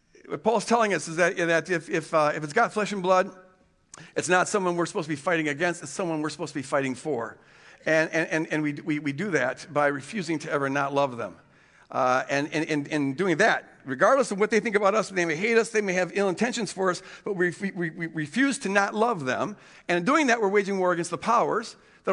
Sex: male